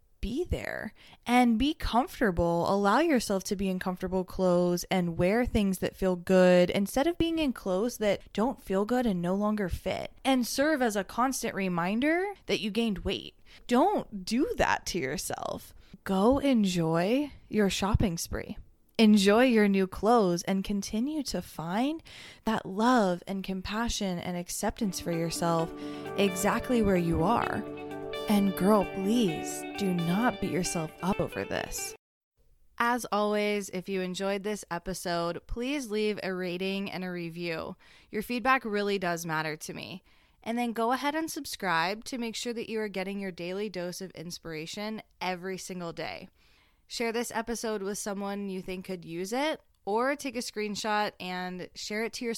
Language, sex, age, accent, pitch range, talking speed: English, female, 20-39, American, 180-230 Hz, 165 wpm